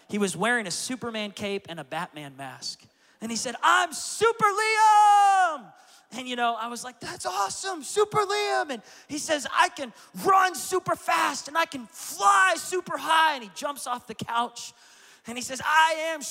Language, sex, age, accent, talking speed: English, male, 30-49, American, 190 wpm